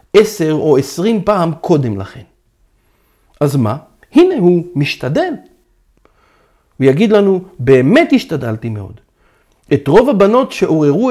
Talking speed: 115 wpm